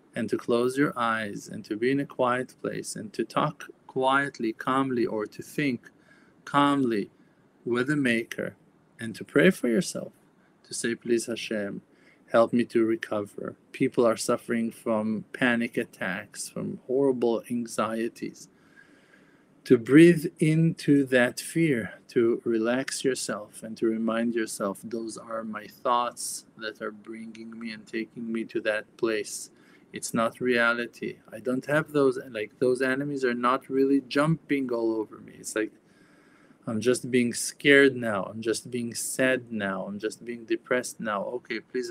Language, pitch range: English, 115-130 Hz